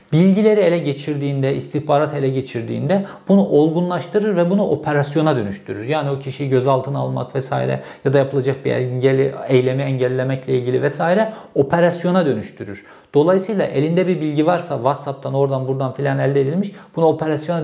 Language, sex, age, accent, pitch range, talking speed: Turkish, male, 50-69, native, 130-175 Hz, 145 wpm